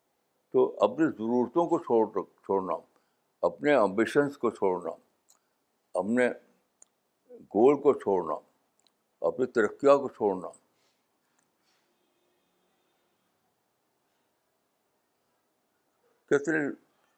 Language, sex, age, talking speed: Urdu, male, 60-79, 65 wpm